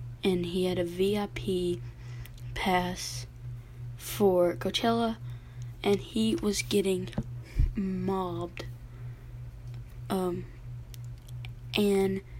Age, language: 10-29, English